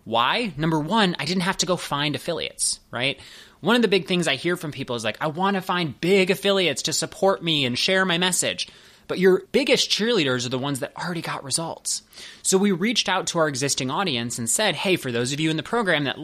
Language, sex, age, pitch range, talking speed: English, male, 20-39, 125-185 Hz, 240 wpm